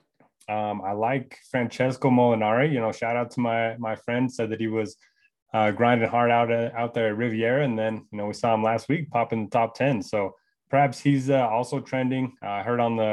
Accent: American